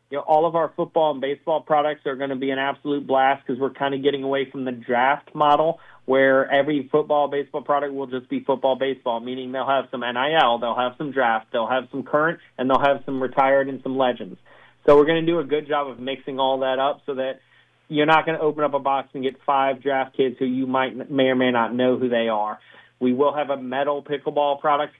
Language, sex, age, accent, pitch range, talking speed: English, male, 30-49, American, 130-150 Hz, 240 wpm